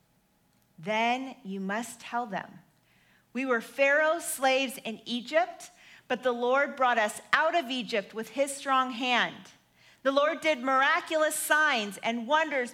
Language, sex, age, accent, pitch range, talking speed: English, female, 40-59, American, 205-310 Hz, 140 wpm